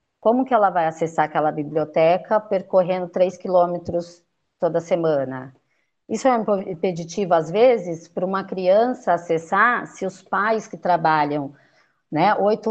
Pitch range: 170-240 Hz